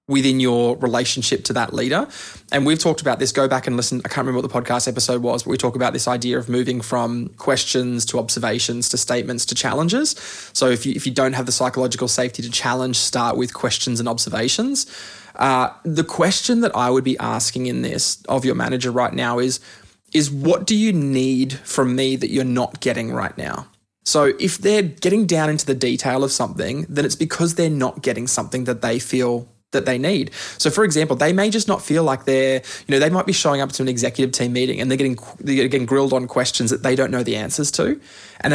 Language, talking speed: English, 225 wpm